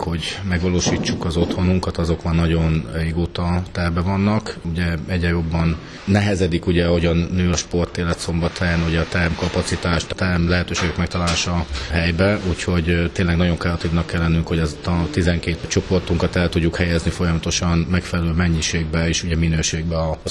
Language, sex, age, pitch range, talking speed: Hungarian, male, 30-49, 85-90 Hz, 150 wpm